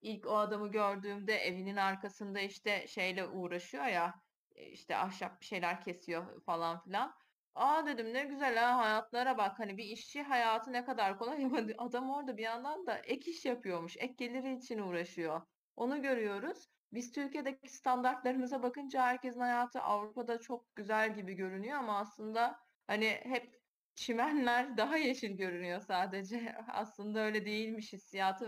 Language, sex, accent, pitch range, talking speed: Turkish, female, native, 195-255 Hz, 145 wpm